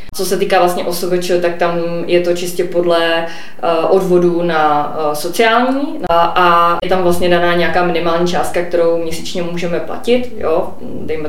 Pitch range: 160-185 Hz